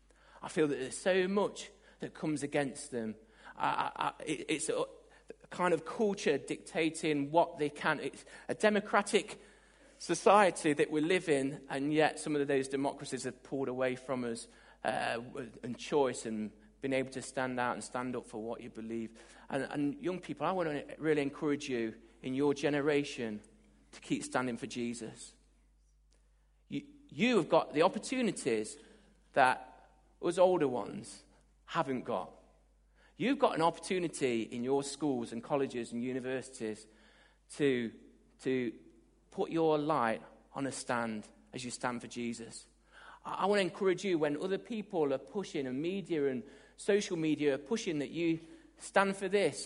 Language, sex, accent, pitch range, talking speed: English, male, British, 130-195 Hz, 160 wpm